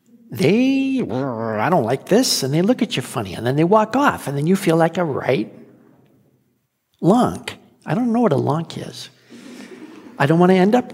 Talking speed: 205 wpm